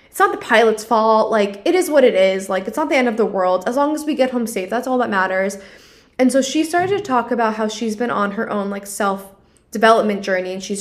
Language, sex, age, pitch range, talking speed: English, female, 10-29, 200-255 Hz, 270 wpm